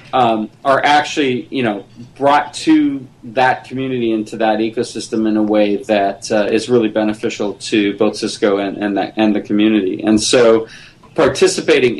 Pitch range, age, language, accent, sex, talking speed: 110-120 Hz, 30-49, English, American, male, 160 wpm